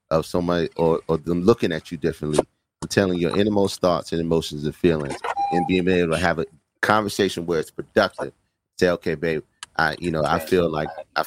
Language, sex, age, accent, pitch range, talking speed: English, male, 30-49, American, 85-105 Hz, 200 wpm